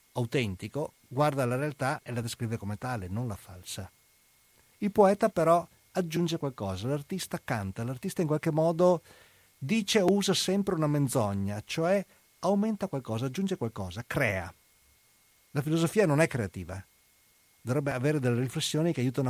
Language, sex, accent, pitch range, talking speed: Italian, male, native, 105-165 Hz, 145 wpm